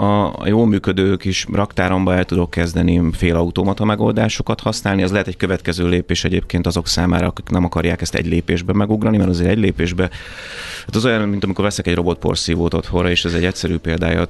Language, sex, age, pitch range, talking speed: Hungarian, male, 30-49, 85-100 Hz, 190 wpm